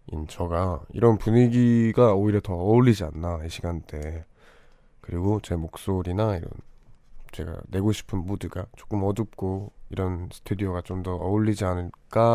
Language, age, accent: Korean, 20-39, native